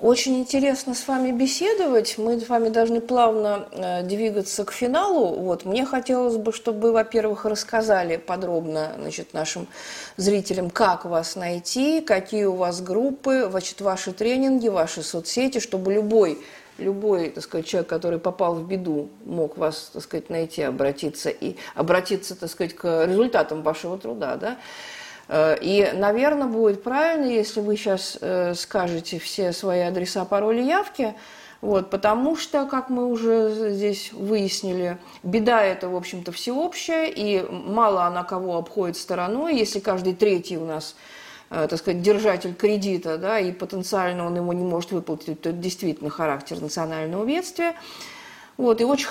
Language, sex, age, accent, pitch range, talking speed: Russian, female, 50-69, native, 180-230 Hz, 145 wpm